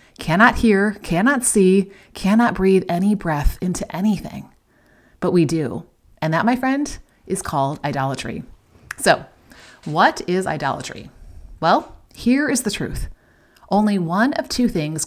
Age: 30-49